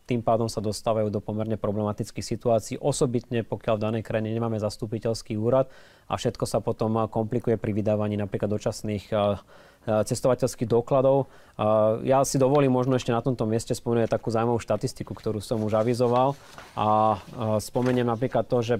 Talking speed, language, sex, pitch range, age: 155 wpm, Slovak, male, 110-130 Hz, 20-39